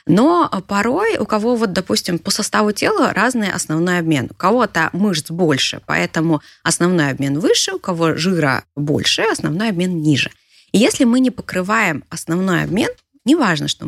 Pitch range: 165-245 Hz